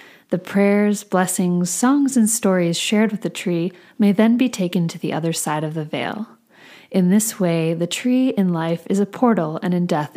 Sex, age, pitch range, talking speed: female, 30-49, 165-210 Hz, 200 wpm